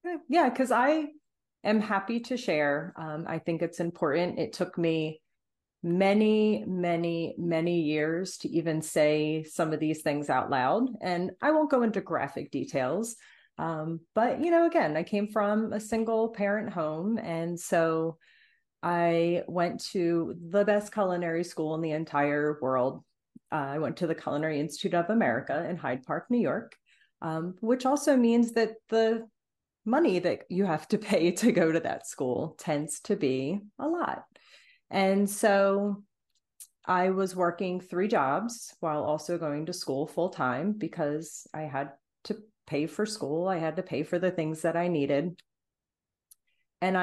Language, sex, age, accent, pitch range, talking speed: English, female, 30-49, American, 160-215 Hz, 160 wpm